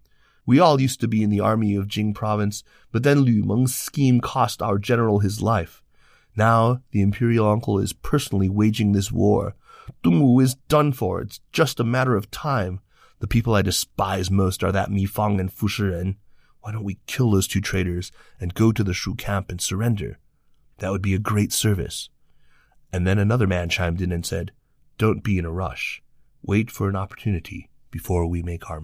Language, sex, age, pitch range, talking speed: English, male, 30-49, 95-110 Hz, 200 wpm